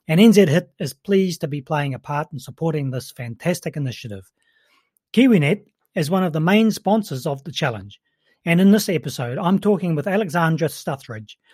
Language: English